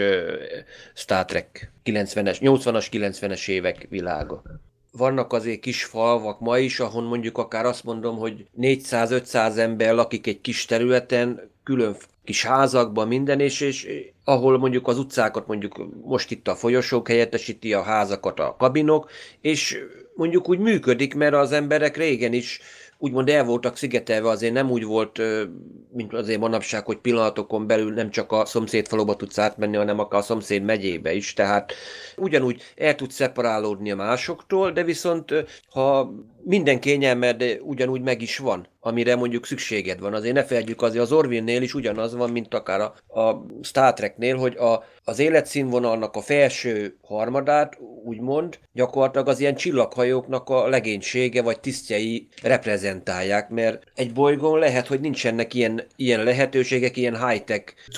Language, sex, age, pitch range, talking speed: Hungarian, male, 30-49, 115-135 Hz, 145 wpm